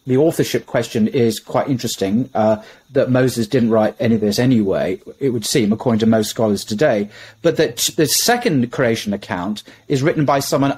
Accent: British